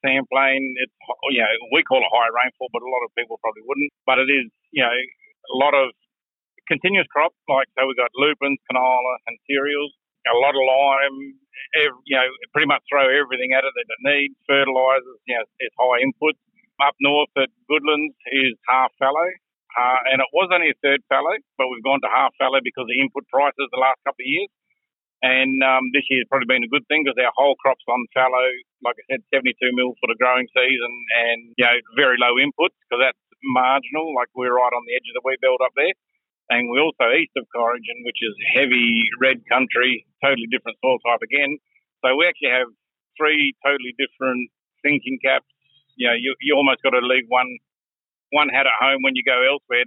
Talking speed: 210 wpm